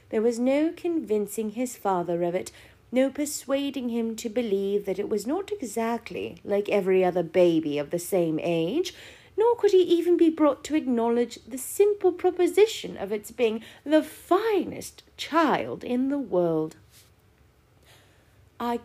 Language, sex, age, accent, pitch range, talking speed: English, female, 30-49, British, 190-265 Hz, 150 wpm